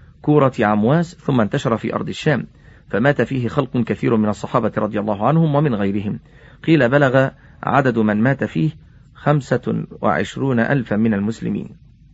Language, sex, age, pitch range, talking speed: Arabic, male, 40-59, 110-145 Hz, 140 wpm